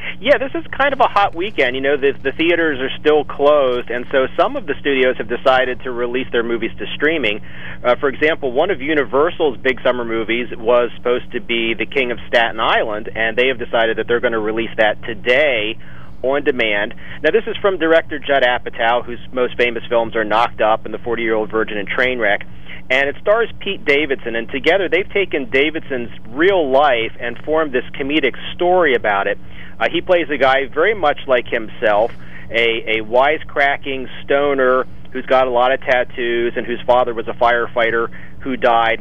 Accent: American